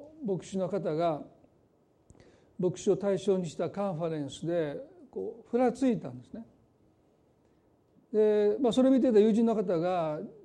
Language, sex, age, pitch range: Japanese, male, 40-59, 165-230 Hz